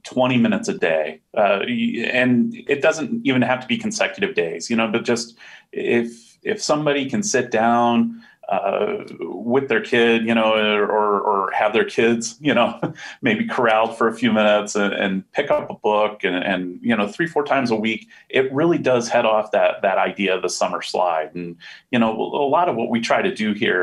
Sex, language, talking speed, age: male, English, 205 wpm, 30-49